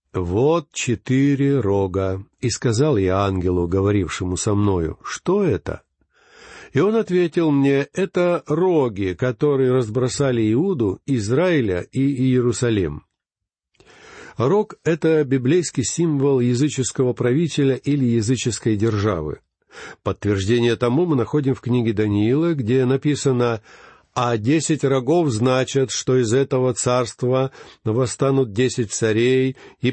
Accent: native